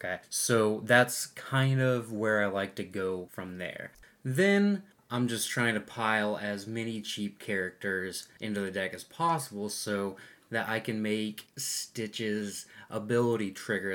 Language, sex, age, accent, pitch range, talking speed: English, male, 20-39, American, 100-115 Hz, 150 wpm